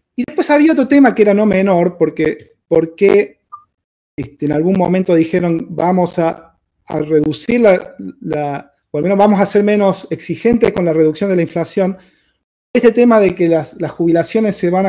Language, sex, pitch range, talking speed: Spanish, male, 155-205 Hz, 170 wpm